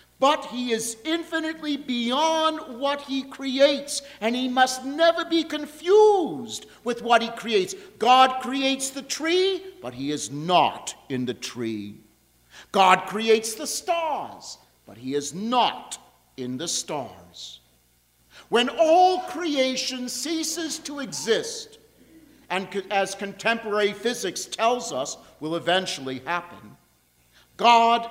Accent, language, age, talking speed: American, English, 50-69, 120 wpm